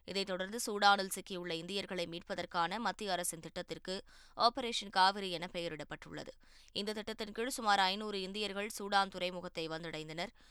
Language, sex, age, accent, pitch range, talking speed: Tamil, female, 20-39, native, 175-215 Hz, 125 wpm